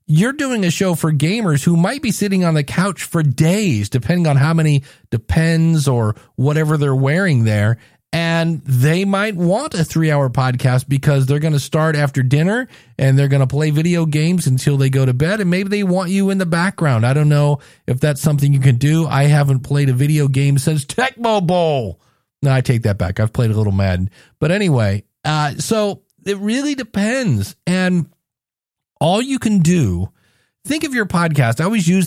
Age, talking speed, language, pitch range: 40-59, 200 wpm, English, 135-185 Hz